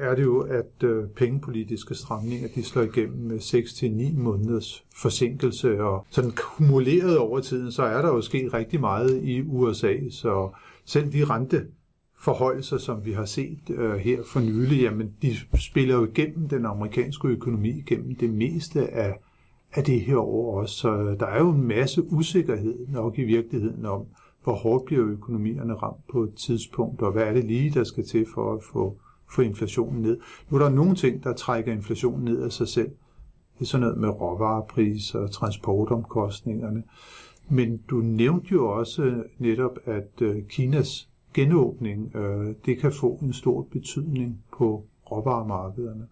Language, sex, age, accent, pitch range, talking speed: Danish, male, 50-69, native, 110-135 Hz, 160 wpm